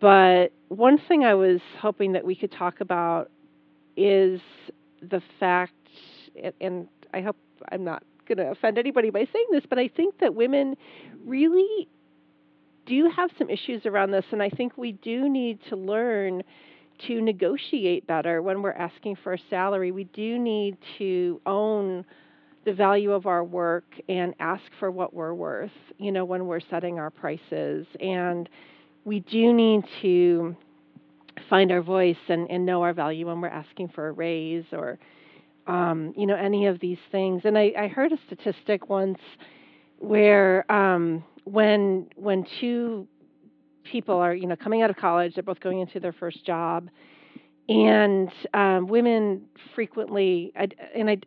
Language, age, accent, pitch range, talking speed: English, 40-59, American, 175-210 Hz, 165 wpm